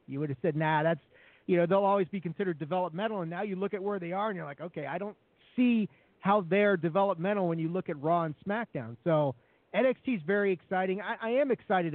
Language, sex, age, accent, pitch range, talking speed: English, male, 40-59, American, 155-195 Hz, 235 wpm